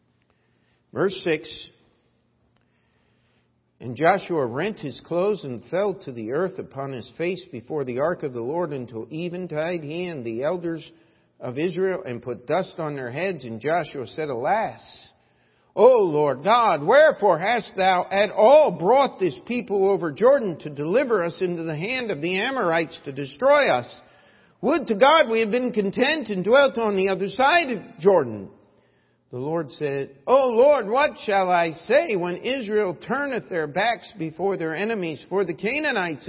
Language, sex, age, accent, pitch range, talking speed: English, male, 50-69, American, 165-240 Hz, 165 wpm